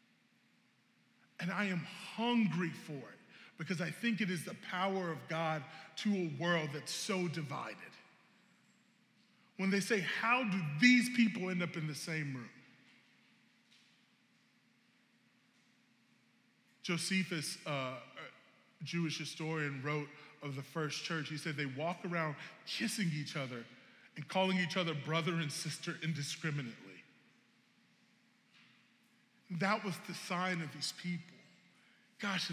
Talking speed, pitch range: 125 wpm, 150-220 Hz